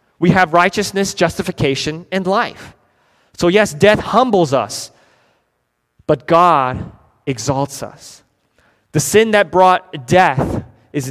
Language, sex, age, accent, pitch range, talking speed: English, male, 30-49, American, 130-175 Hz, 115 wpm